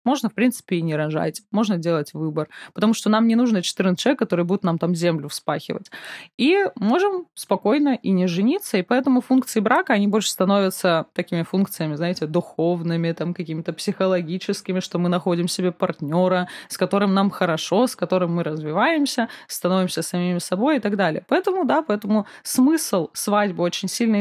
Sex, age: female, 20-39